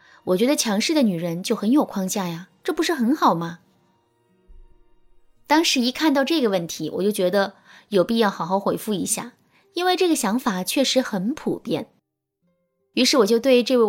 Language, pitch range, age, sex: Chinese, 185-260 Hz, 20-39, female